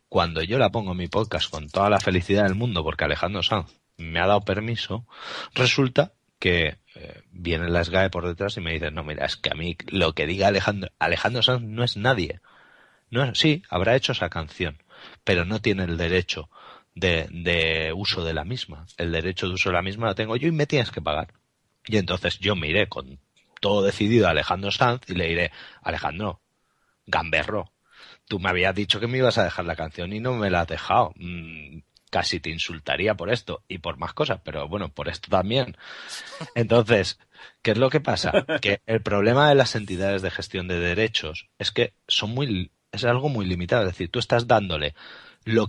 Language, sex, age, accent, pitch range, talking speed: Spanish, male, 30-49, Spanish, 85-115 Hz, 205 wpm